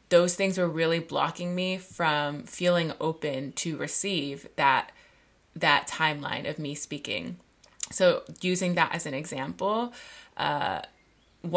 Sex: female